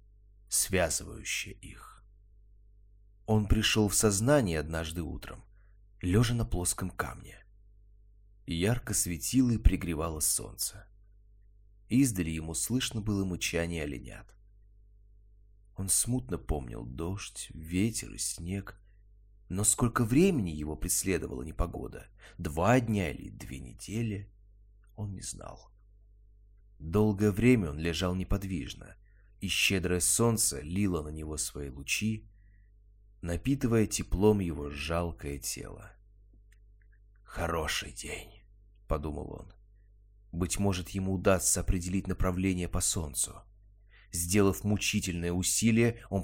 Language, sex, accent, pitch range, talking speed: Russian, male, native, 90-105 Hz, 100 wpm